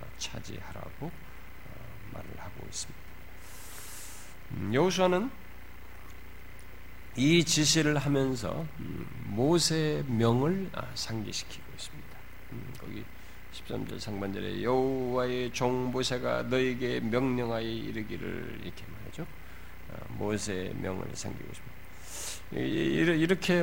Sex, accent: male, native